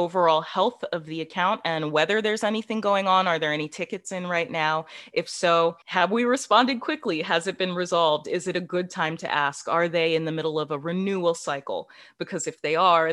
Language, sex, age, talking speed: English, female, 20-39, 220 wpm